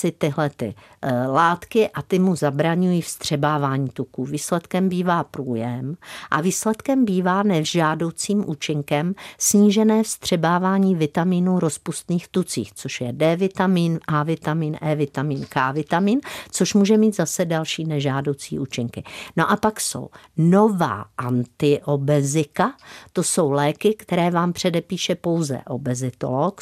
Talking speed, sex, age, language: 110 wpm, female, 50-69, Czech